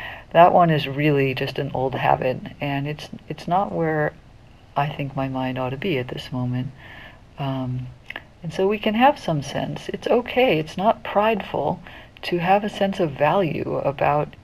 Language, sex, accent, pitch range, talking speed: English, female, American, 130-160 Hz, 180 wpm